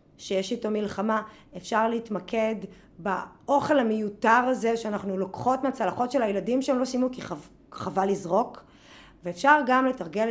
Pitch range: 195-265 Hz